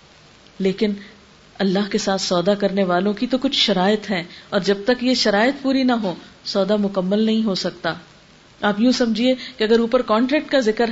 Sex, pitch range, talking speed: female, 190-250 Hz, 185 wpm